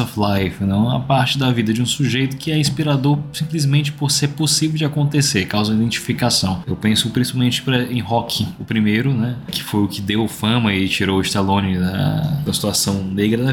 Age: 20-39